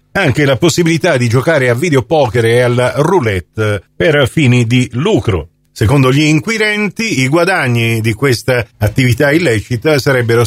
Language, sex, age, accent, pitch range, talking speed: Italian, male, 40-59, native, 115-160 Hz, 140 wpm